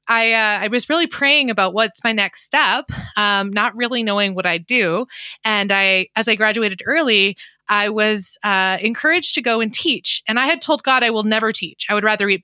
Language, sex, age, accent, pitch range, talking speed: English, female, 20-39, American, 205-255 Hz, 215 wpm